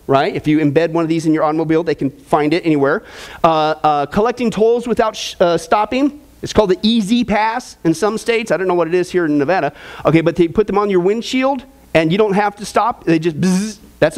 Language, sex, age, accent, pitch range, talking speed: English, male, 40-59, American, 170-230 Hz, 235 wpm